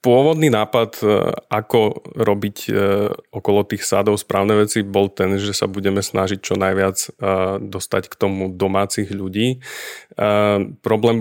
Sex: male